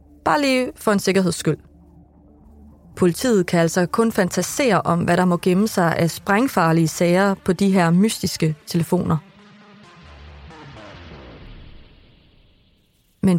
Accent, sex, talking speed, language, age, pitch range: native, female, 115 wpm, Danish, 30-49, 175-230 Hz